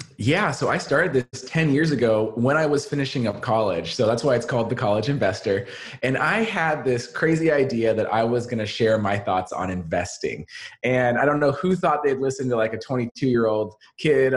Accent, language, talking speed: American, English, 215 wpm